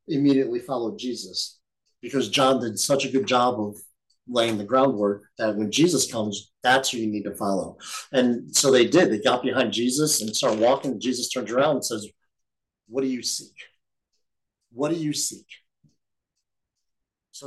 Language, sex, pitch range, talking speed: English, male, 120-145 Hz, 170 wpm